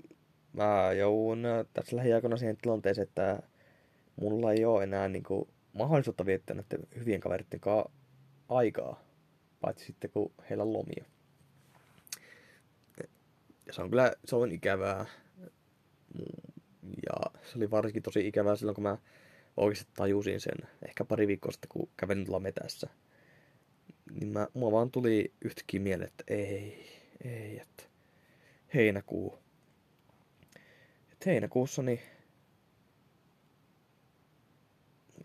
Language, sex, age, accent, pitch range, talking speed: Finnish, male, 20-39, native, 100-125 Hz, 110 wpm